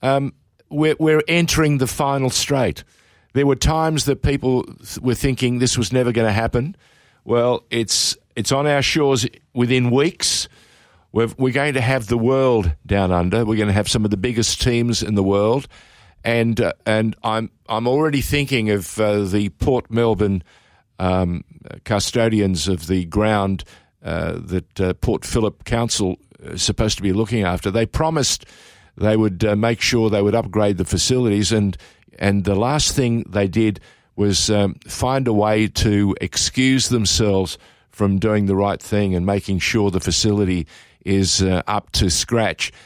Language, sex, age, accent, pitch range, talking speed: English, male, 50-69, Australian, 100-125 Hz, 170 wpm